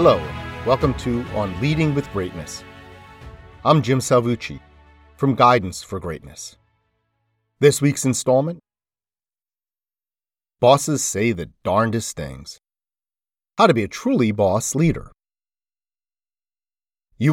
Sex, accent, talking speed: male, American, 105 wpm